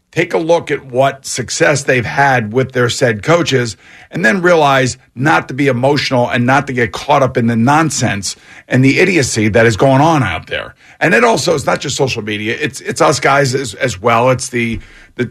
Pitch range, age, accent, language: 125-155 Hz, 50-69, American, English